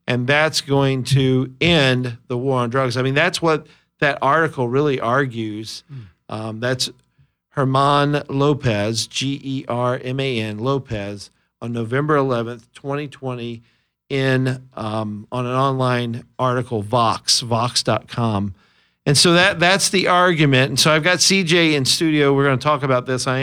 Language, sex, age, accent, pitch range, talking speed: English, male, 50-69, American, 120-150 Hz, 140 wpm